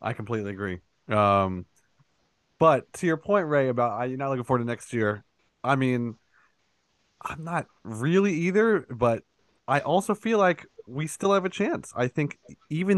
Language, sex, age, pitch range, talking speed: English, male, 20-39, 100-130 Hz, 165 wpm